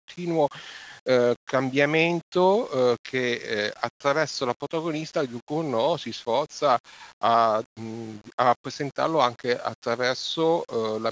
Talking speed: 120 wpm